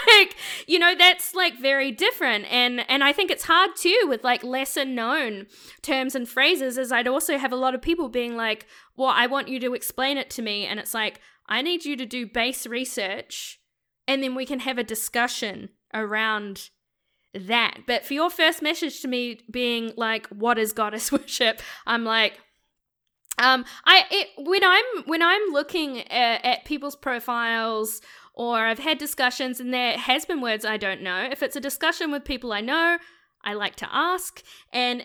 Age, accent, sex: 10-29, Australian, female